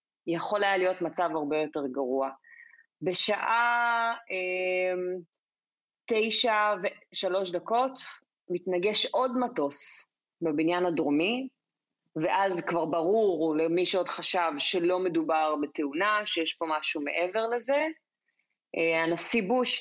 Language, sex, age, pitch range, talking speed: Hebrew, female, 30-49, 170-210 Hz, 105 wpm